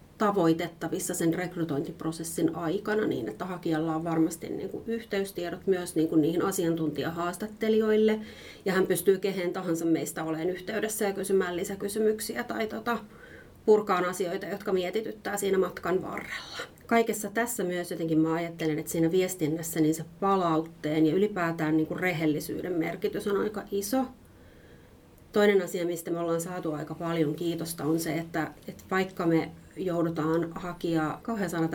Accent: native